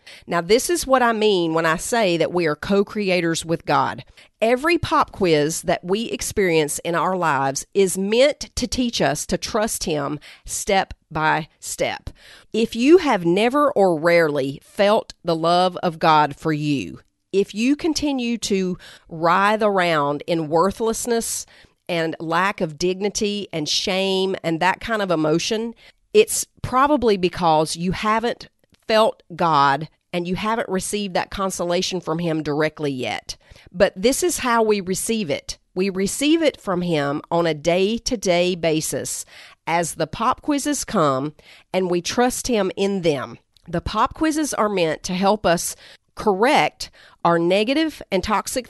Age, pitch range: 40-59, 165-220 Hz